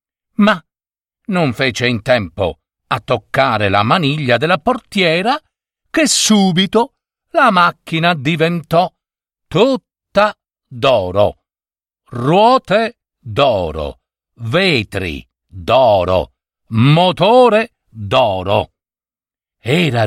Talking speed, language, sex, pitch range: 75 wpm, Italian, male, 105-175 Hz